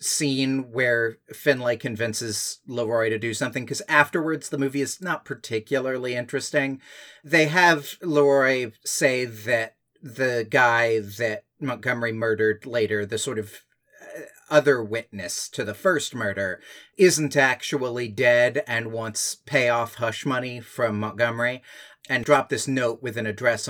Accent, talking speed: American, 135 wpm